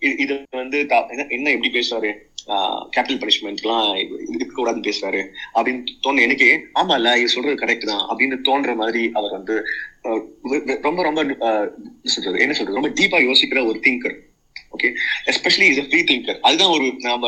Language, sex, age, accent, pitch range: Tamil, male, 30-49, native, 110-130 Hz